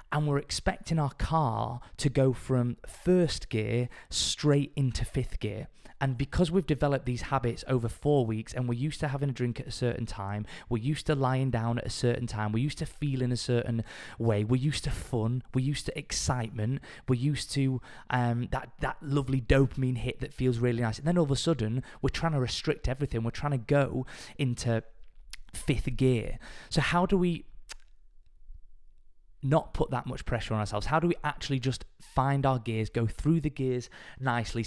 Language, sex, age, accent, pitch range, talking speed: English, male, 20-39, British, 115-140 Hz, 195 wpm